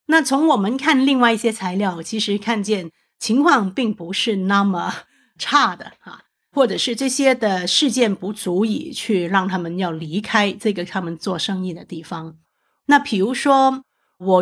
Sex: female